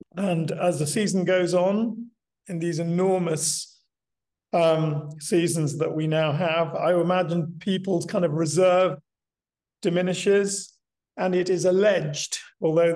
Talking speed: 125 wpm